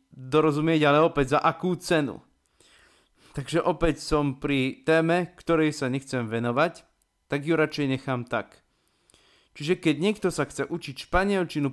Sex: male